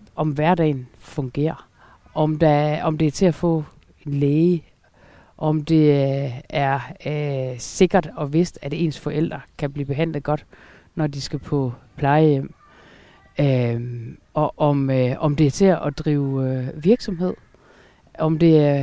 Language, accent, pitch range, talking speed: Danish, native, 150-195 Hz, 150 wpm